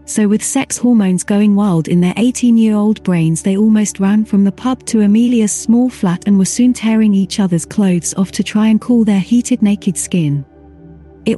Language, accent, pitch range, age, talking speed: English, British, 175-220 Hz, 30-49, 205 wpm